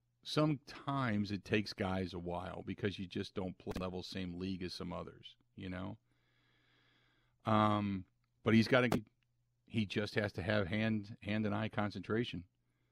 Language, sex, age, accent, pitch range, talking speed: English, male, 50-69, American, 95-120 Hz, 165 wpm